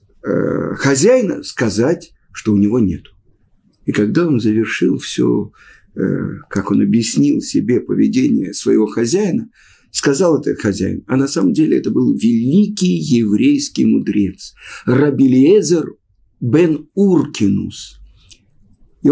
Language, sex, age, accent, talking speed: Russian, male, 50-69, native, 105 wpm